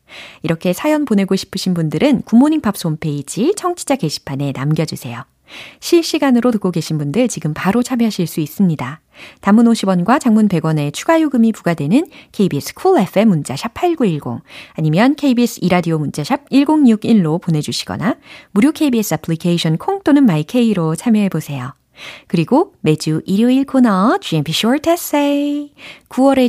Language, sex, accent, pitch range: Korean, female, native, 160-255 Hz